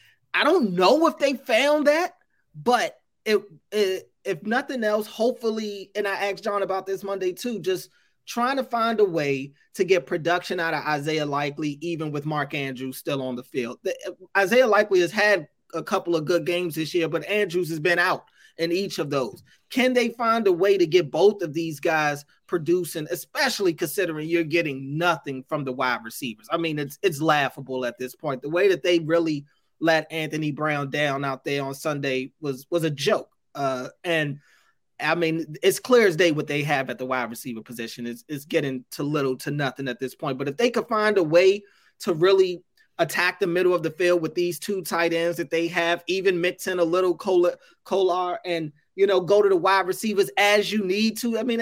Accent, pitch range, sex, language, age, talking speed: American, 150-200 Hz, male, English, 30-49, 210 wpm